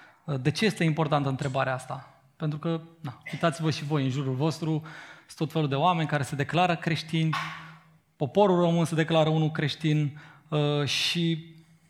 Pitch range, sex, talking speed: 145-170 Hz, male, 155 wpm